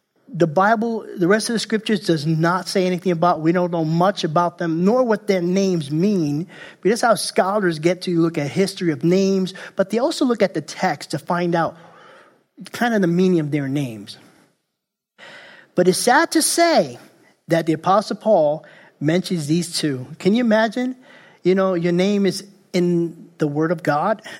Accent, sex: American, male